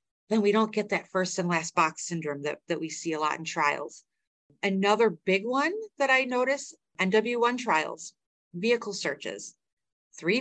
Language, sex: English, female